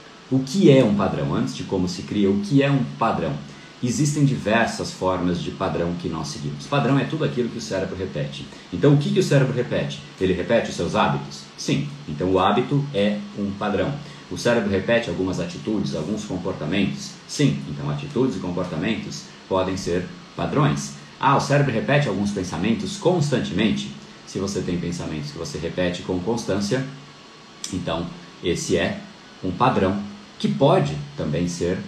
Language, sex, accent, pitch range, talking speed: Portuguese, male, Brazilian, 85-130 Hz, 170 wpm